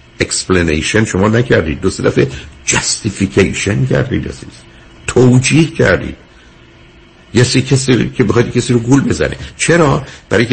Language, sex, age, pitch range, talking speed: Persian, male, 60-79, 95-130 Hz, 110 wpm